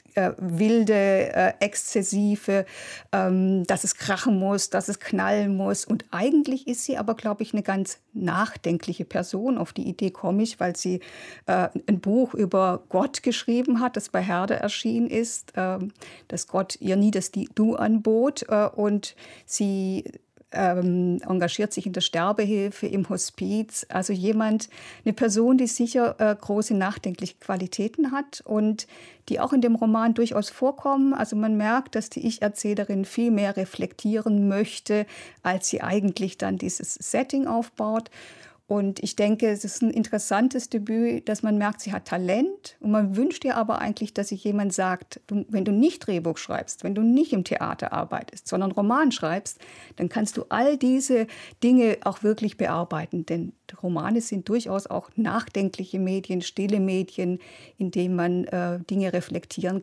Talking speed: 155 wpm